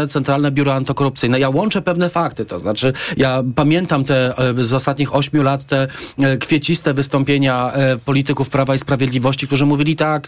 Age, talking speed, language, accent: 40-59, 150 wpm, Polish, native